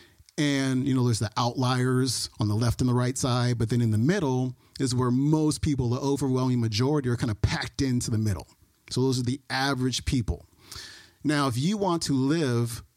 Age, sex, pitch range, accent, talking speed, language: 40-59, male, 110-145 Hz, American, 205 wpm, English